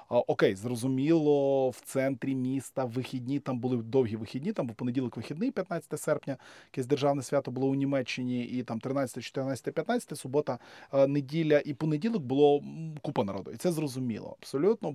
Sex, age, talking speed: male, 20-39, 155 wpm